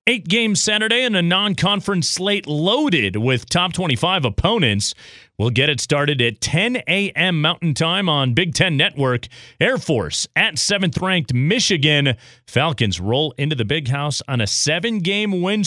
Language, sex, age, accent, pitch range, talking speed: English, male, 40-59, American, 130-195 Hz, 155 wpm